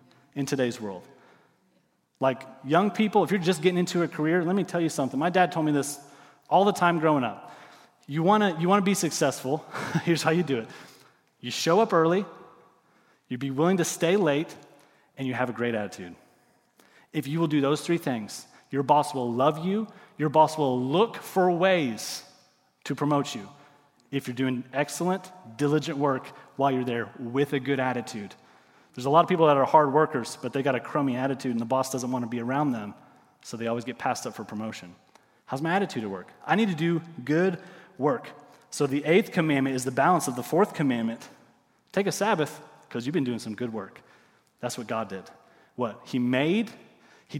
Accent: American